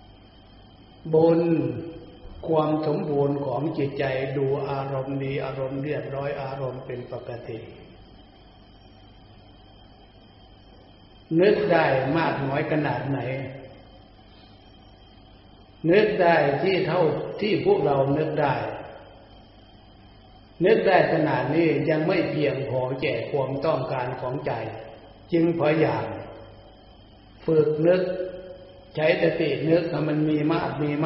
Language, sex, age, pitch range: Thai, male, 60-79, 105-155 Hz